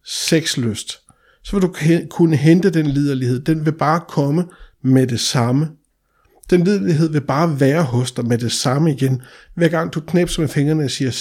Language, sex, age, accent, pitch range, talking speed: Danish, male, 60-79, native, 135-175 Hz, 185 wpm